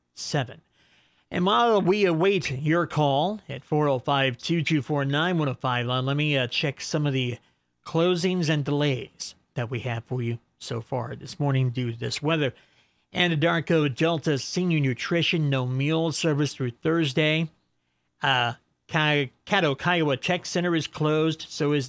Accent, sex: American, male